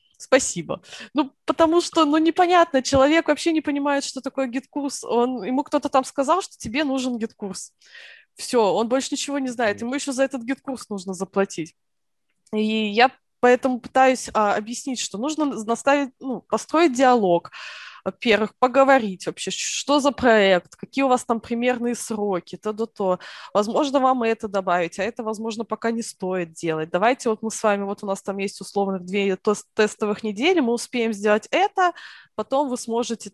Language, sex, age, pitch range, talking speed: Russian, female, 20-39, 195-265 Hz, 165 wpm